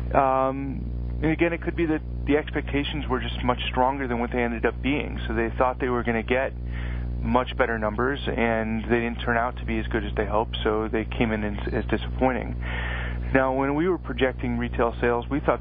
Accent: American